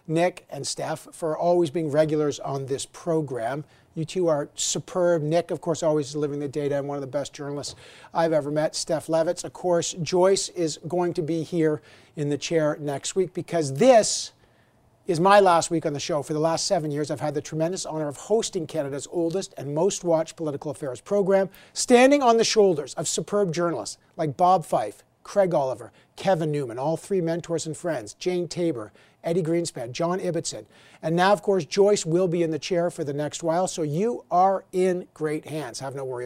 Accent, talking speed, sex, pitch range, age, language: American, 205 wpm, male, 150-185 Hz, 50-69, English